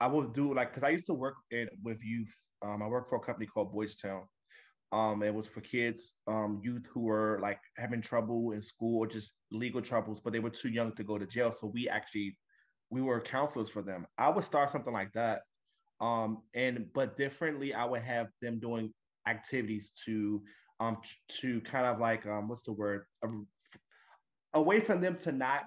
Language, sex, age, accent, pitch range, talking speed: English, male, 20-39, American, 110-125 Hz, 205 wpm